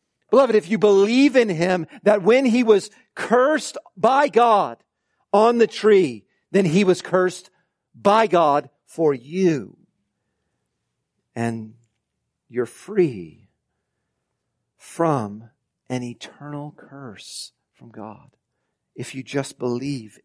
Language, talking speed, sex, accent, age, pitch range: English, 110 wpm, male, American, 50-69, 135-190 Hz